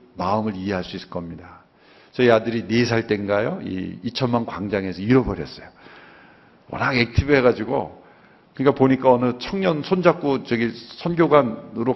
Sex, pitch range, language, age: male, 100-155 Hz, Korean, 50-69